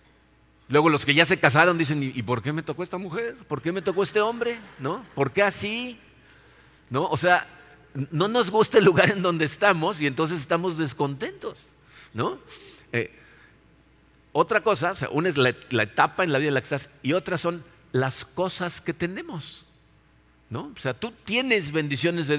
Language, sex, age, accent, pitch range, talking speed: Spanish, male, 50-69, Mexican, 140-185 Hz, 190 wpm